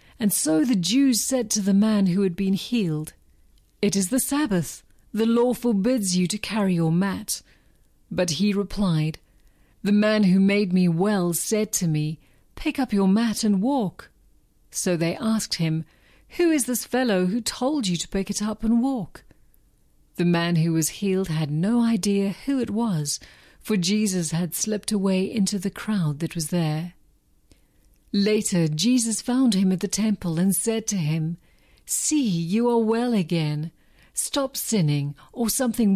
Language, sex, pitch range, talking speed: English, female, 170-225 Hz, 170 wpm